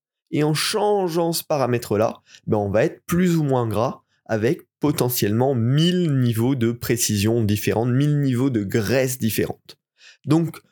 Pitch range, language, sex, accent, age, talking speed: 110-145 Hz, French, male, French, 20-39, 145 wpm